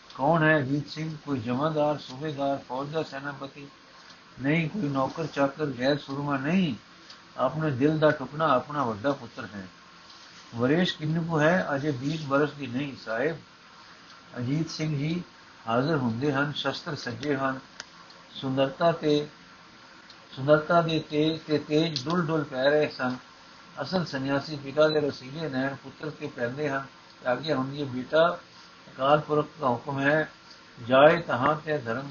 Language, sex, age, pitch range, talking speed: Punjabi, male, 60-79, 130-150 Hz, 150 wpm